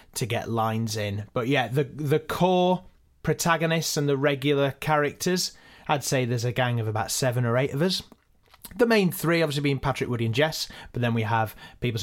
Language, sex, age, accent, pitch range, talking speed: English, male, 30-49, British, 120-155 Hz, 200 wpm